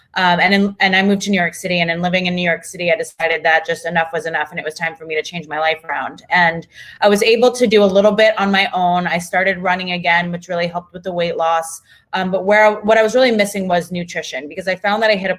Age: 20-39